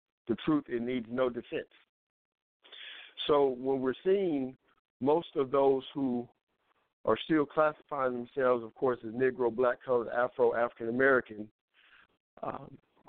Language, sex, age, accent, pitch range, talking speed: English, male, 50-69, American, 125-150 Hz, 130 wpm